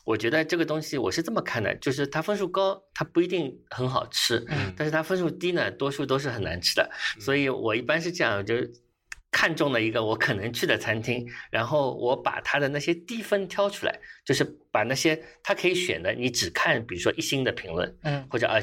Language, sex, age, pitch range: Chinese, male, 50-69, 115-165 Hz